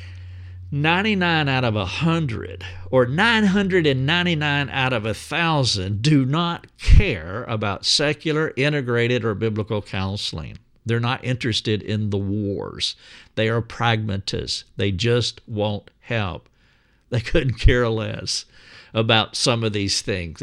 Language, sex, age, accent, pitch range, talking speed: English, male, 50-69, American, 105-130 Hz, 115 wpm